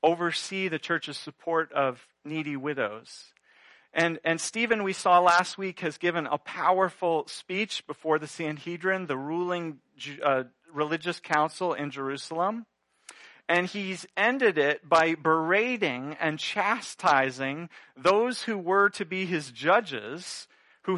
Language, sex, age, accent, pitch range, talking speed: English, male, 40-59, American, 155-225 Hz, 130 wpm